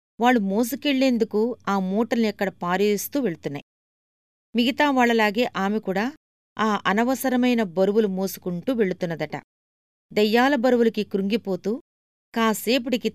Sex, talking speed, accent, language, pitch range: female, 80 wpm, native, Telugu, 180-235 Hz